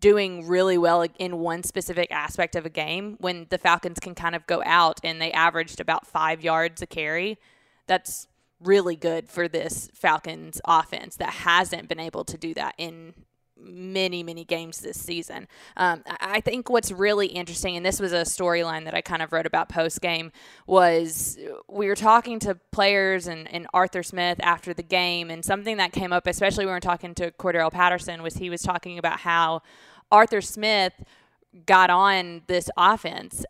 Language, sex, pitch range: English, female, 170-195 Hz